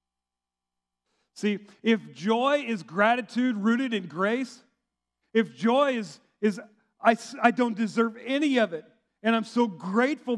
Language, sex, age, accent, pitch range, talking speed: English, male, 40-59, American, 140-225 Hz, 135 wpm